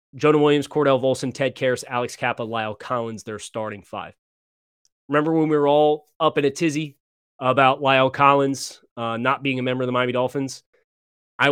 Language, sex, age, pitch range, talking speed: English, male, 30-49, 110-140 Hz, 180 wpm